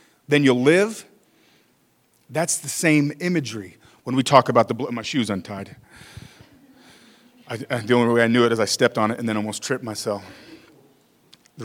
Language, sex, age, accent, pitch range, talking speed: English, male, 40-59, American, 120-160 Hz, 180 wpm